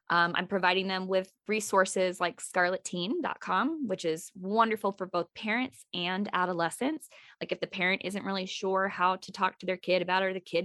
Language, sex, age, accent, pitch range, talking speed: English, female, 20-39, American, 175-220 Hz, 190 wpm